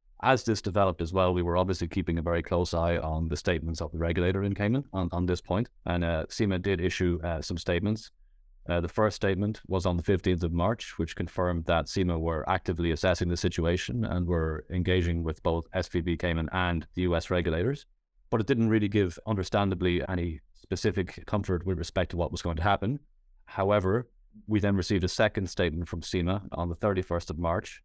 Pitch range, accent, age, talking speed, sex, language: 85-100 Hz, Irish, 30-49, 205 wpm, male, English